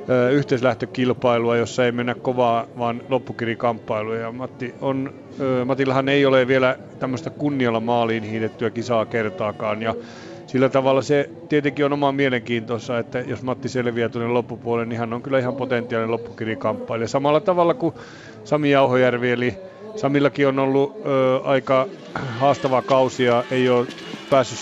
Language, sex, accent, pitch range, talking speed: Finnish, male, native, 120-135 Hz, 140 wpm